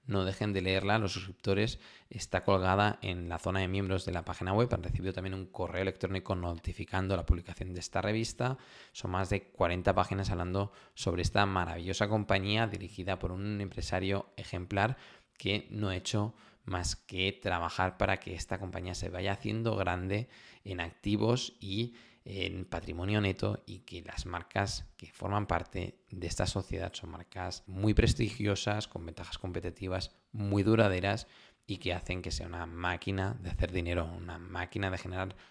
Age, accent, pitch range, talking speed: 20-39, Spanish, 90-100 Hz, 165 wpm